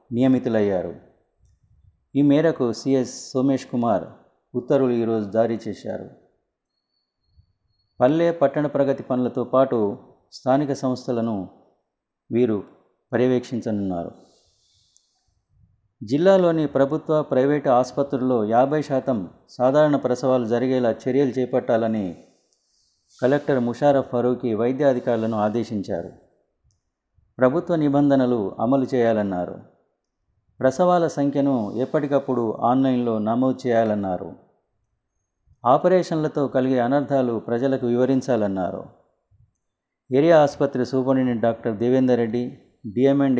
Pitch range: 110-135 Hz